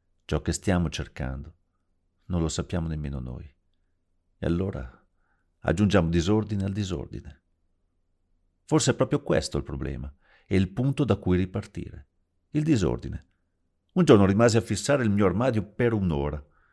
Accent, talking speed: native, 140 wpm